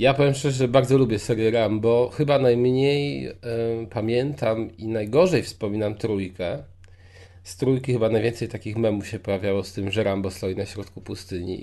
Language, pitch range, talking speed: Polish, 100-130 Hz, 160 wpm